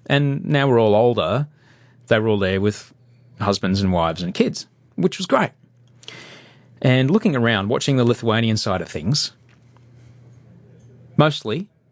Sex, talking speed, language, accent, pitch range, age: male, 140 wpm, English, Australian, 115-140 Hz, 30-49